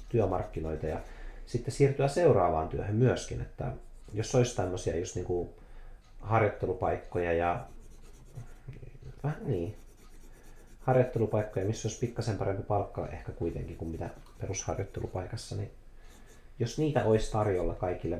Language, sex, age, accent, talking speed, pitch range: Finnish, male, 30-49, native, 115 wpm, 95-125 Hz